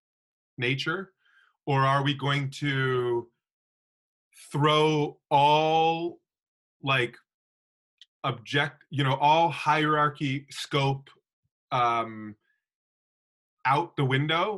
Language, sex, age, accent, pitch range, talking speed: English, male, 30-49, American, 125-150 Hz, 80 wpm